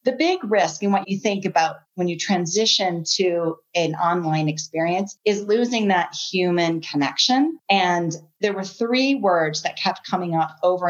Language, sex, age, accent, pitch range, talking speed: English, female, 40-59, American, 175-230 Hz, 165 wpm